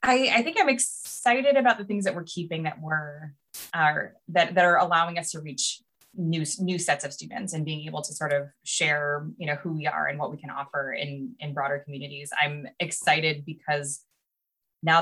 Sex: female